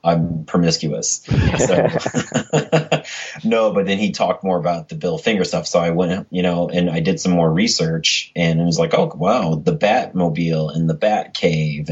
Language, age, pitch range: English, 30-49, 80-85 Hz